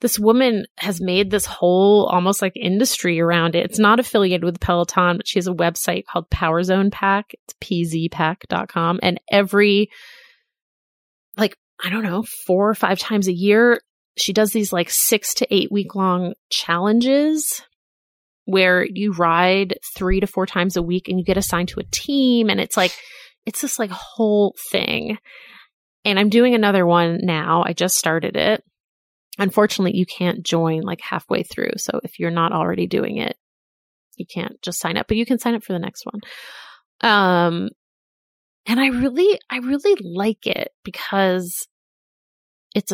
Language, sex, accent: English, female, American